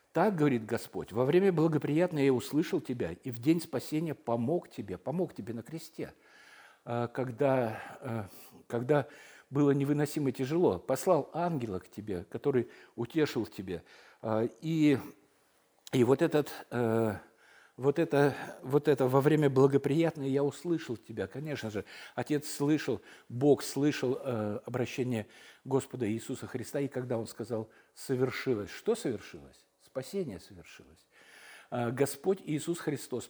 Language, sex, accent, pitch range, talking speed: Russian, male, native, 120-155 Hz, 120 wpm